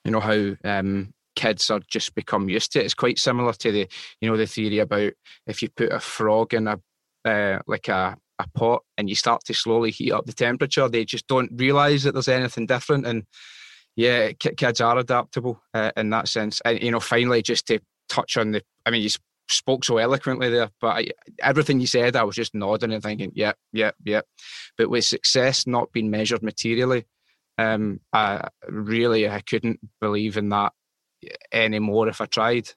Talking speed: 200 wpm